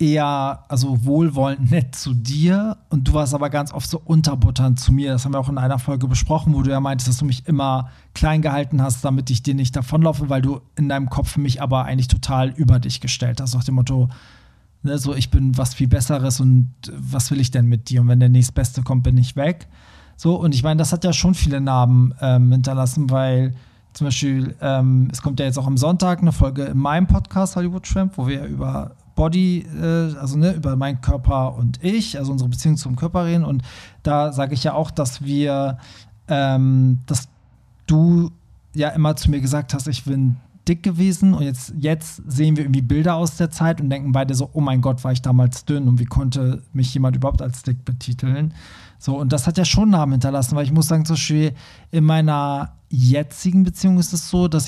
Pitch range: 130-155 Hz